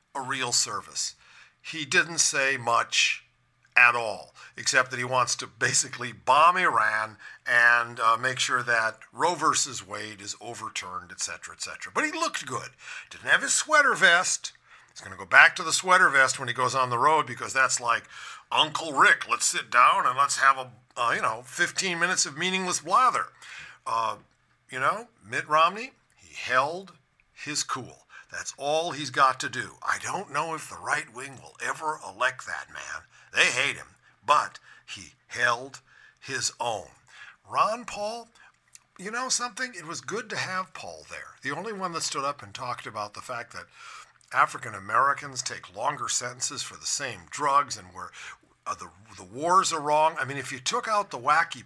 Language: English